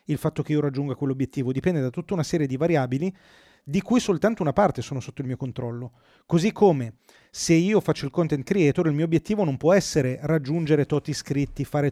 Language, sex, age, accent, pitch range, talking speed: Italian, male, 30-49, native, 145-190 Hz, 205 wpm